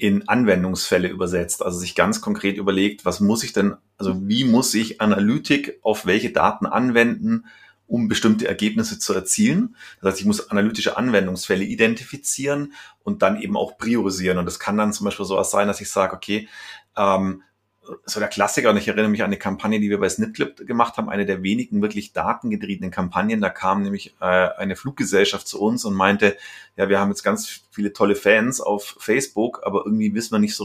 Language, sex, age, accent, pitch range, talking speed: German, male, 30-49, German, 95-115 Hz, 190 wpm